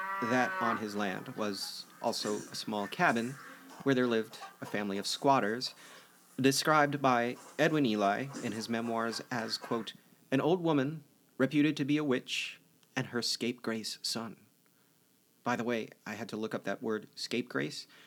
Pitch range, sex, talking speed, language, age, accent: 105-140 Hz, male, 160 wpm, English, 30-49, American